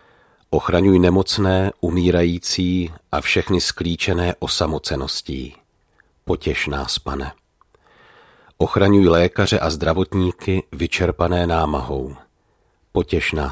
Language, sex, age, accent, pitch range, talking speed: Czech, male, 40-59, native, 80-90 Hz, 70 wpm